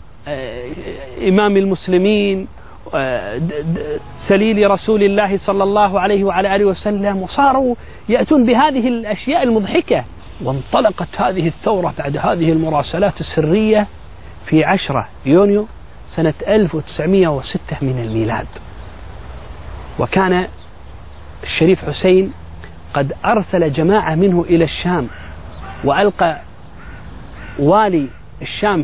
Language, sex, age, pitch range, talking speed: Arabic, male, 40-59, 145-220 Hz, 85 wpm